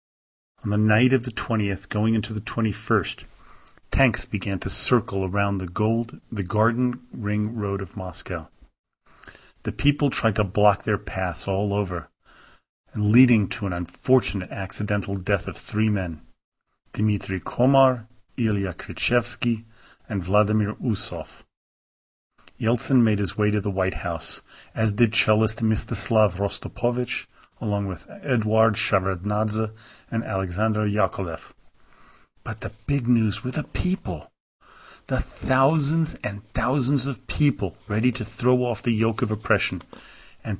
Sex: male